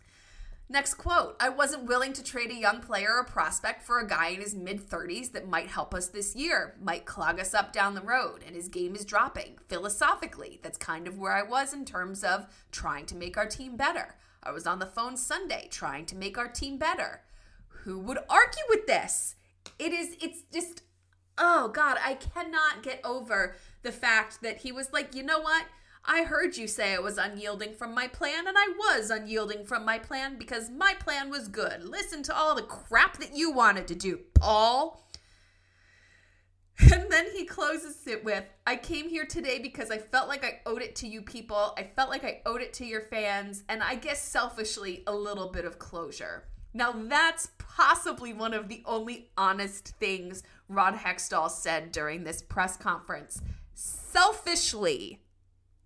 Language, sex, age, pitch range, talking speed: English, female, 20-39, 190-290 Hz, 190 wpm